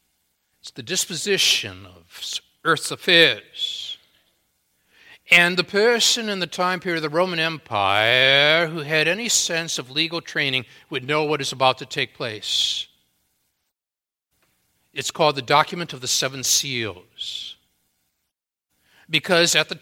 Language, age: English, 60-79